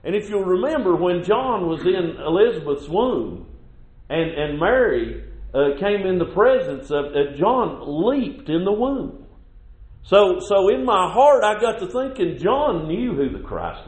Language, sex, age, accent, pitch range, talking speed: English, male, 50-69, American, 155-255 Hz, 170 wpm